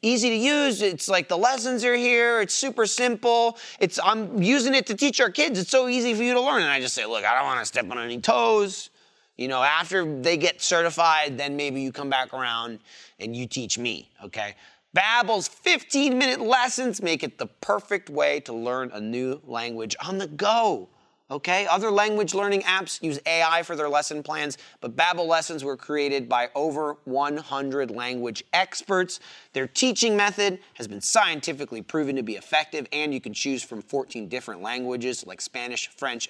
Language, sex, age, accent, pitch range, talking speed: English, male, 30-49, American, 130-205 Hz, 190 wpm